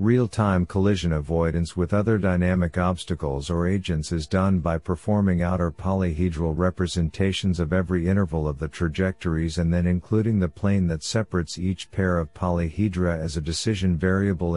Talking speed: 150 wpm